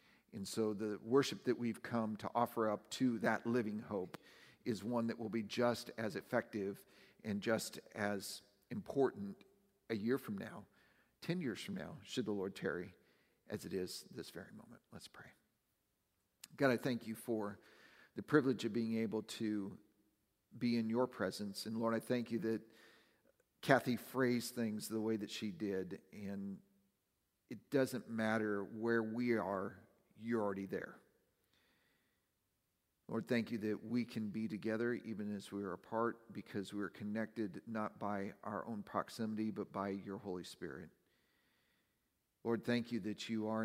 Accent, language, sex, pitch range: American, English, male, 105-115 Hz